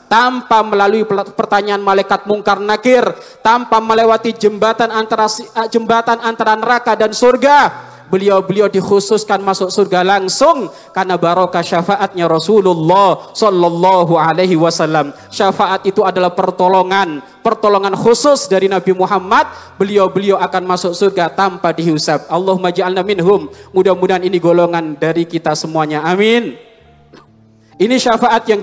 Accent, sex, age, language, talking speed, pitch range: native, male, 20-39, Indonesian, 115 wpm, 190-265 Hz